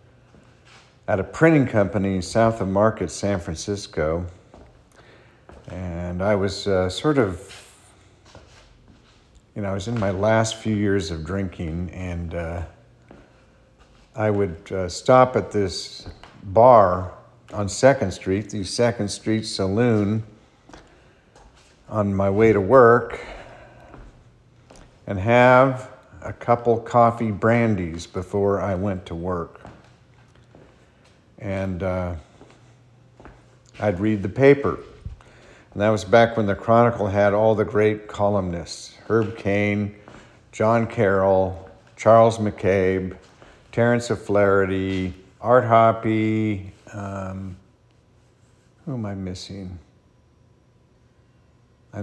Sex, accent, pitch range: male, American, 95-115 Hz